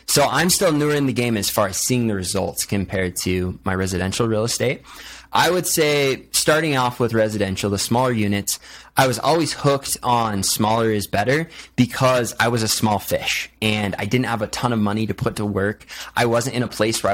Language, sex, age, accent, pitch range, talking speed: English, male, 20-39, American, 105-125 Hz, 215 wpm